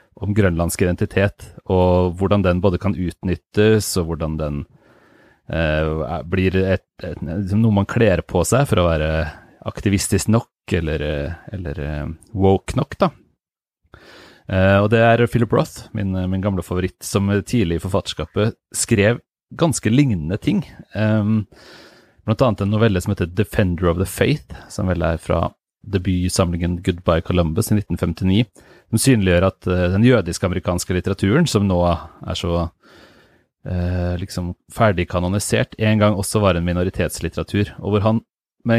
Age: 30-49